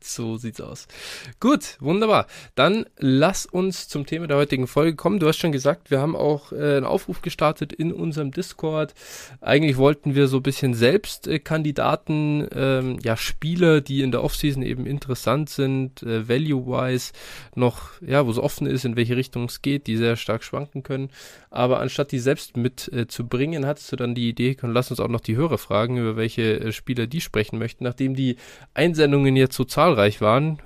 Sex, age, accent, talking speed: male, 20-39, German, 185 wpm